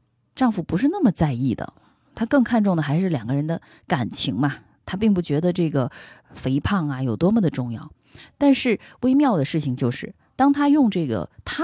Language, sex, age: Chinese, female, 20-39